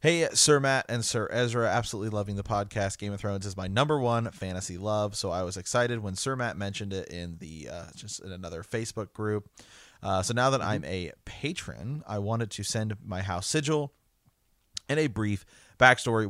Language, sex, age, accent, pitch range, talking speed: English, male, 30-49, American, 95-115 Hz, 200 wpm